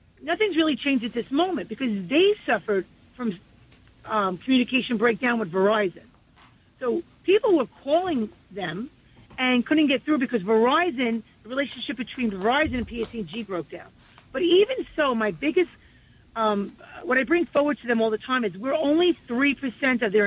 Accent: American